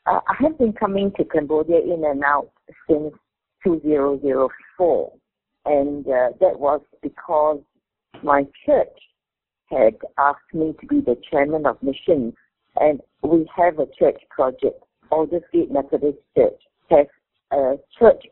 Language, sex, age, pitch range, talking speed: English, female, 50-69, 140-165 Hz, 135 wpm